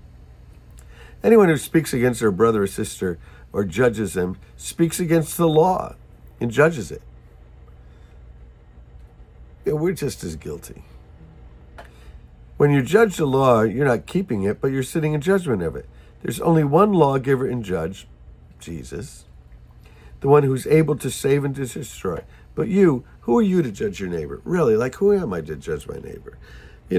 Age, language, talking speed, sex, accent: 50-69, English, 160 wpm, male, American